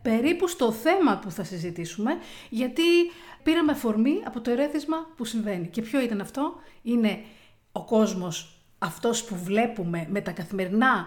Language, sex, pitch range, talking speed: Greek, female, 200-320 Hz, 145 wpm